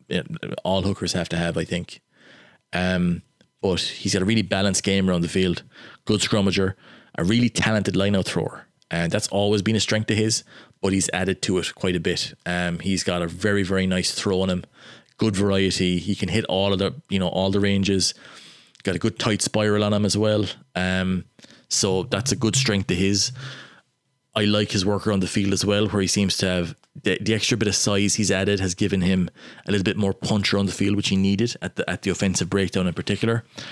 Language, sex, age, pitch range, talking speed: English, male, 20-39, 95-105 Hz, 225 wpm